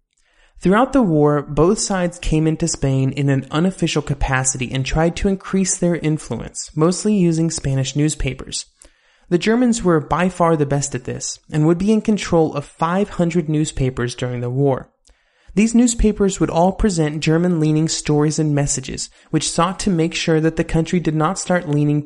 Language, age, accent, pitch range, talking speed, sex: English, 30-49, American, 145-180 Hz, 170 wpm, male